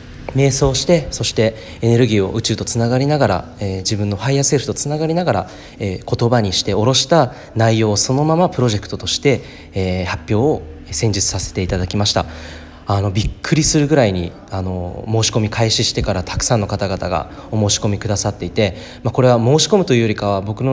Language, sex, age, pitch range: Japanese, male, 20-39, 100-130 Hz